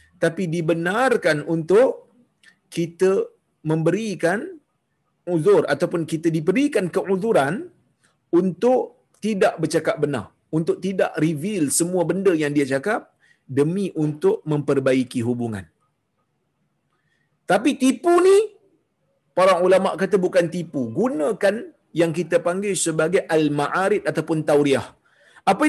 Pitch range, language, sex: 155-200 Hz, Malayalam, male